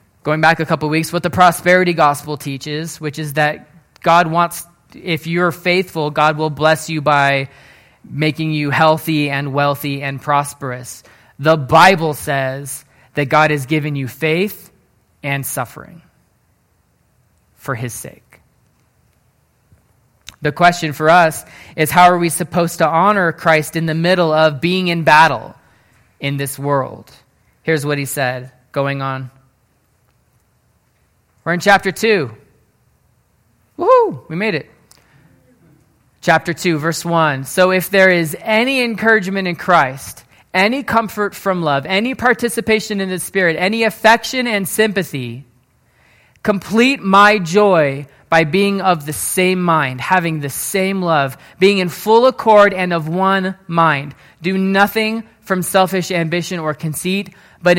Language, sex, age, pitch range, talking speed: English, male, 20-39, 145-190 Hz, 140 wpm